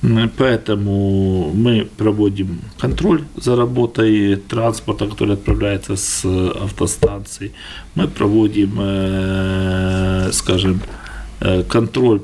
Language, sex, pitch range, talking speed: Russian, male, 100-120 Hz, 75 wpm